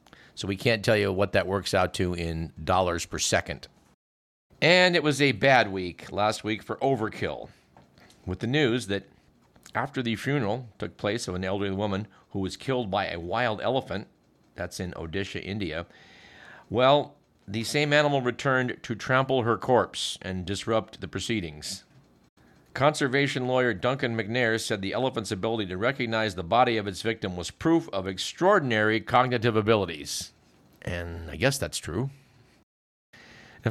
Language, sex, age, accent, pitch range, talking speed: English, male, 50-69, American, 95-130 Hz, 155 wpm